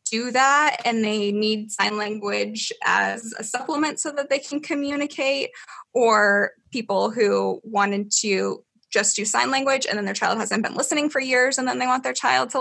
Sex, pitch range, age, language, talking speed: female, 220-285 Hz, 10-29, English, 190 wpm